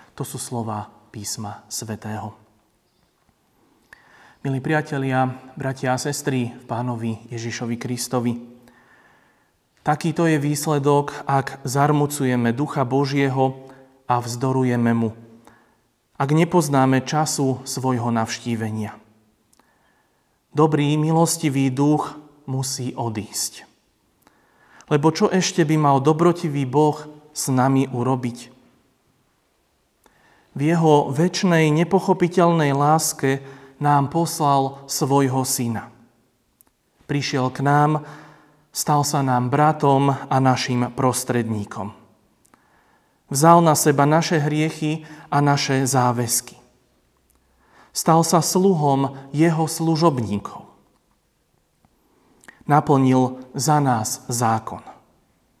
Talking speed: 85 wpm